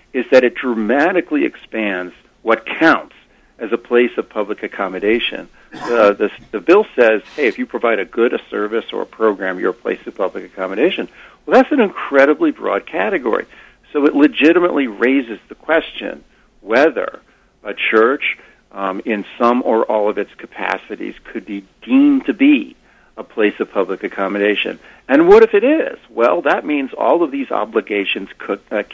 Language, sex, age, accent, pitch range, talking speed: English, male, 60-79, American, 105-150 Hz, 170 wpm